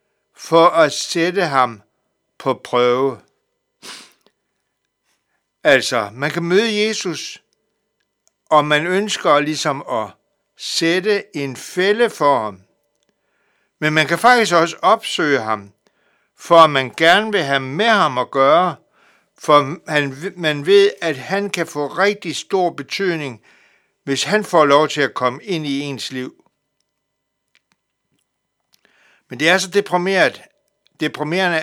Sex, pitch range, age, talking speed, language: male, 140-195 Hz, 60-79, 120 wpm, Danish